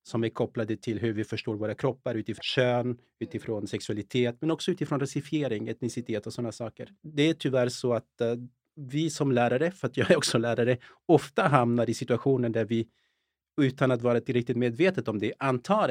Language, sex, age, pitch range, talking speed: English, male, 30-49, 115-140 Hz, 190 wpm